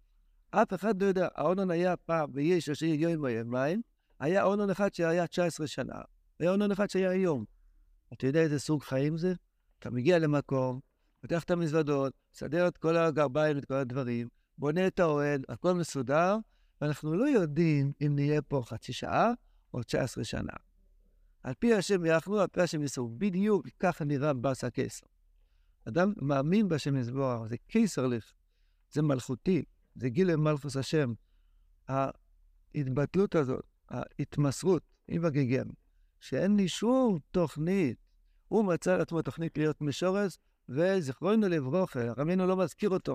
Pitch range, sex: 130-180 Hz, male